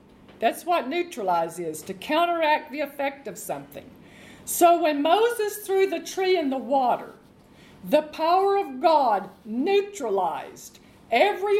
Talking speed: 130 wpm